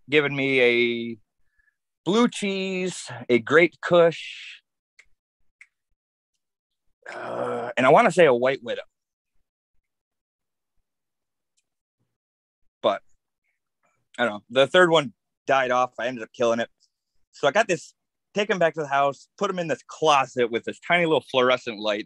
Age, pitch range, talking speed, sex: 30-49, 115-160 Hz, 140 wpm, male